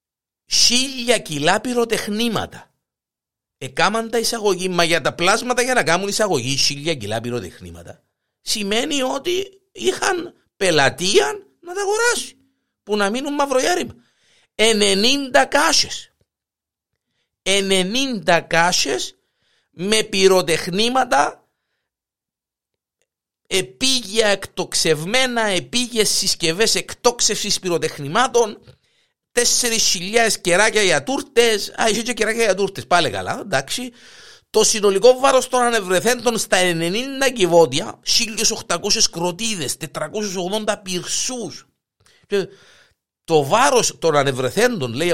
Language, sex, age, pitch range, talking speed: Greek, male, 50-69, 180-245 Hz, 95 wpm